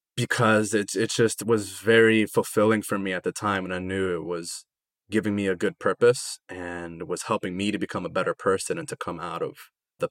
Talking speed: 220 wpm